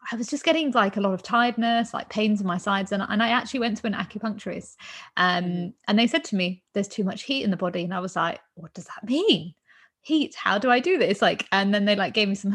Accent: British